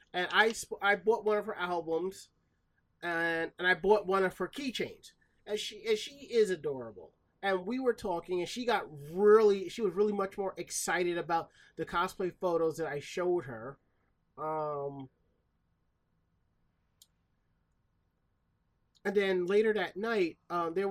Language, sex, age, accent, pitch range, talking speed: English, male, 30-49, American, 160-210 Hz, 150 wpm